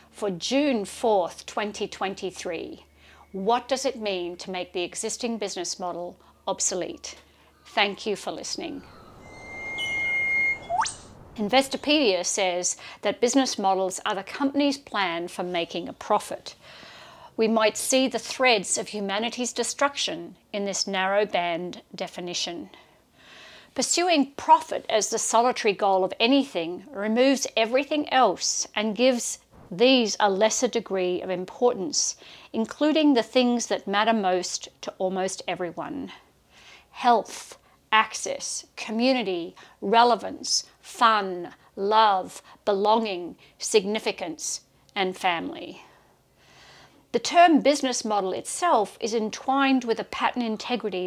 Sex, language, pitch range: female, English, 190-250 Hz